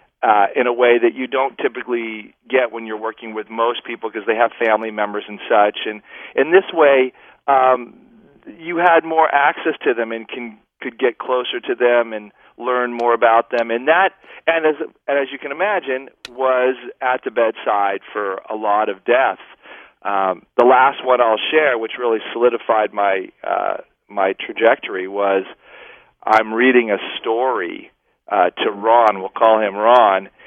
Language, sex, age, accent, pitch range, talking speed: English, male, 40-59, American, 110-130 Hz, 170 wpm